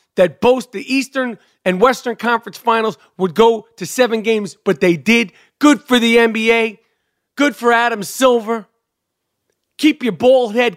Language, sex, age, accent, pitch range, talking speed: English, male, 40-59, American, 210-265 Hz, 155 wpm